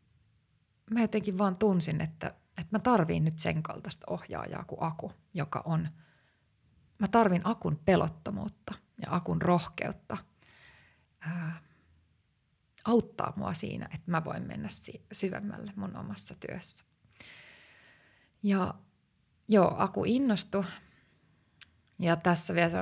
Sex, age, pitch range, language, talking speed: female, 30-49, 155-190 Hz, Finnish, 110 wpm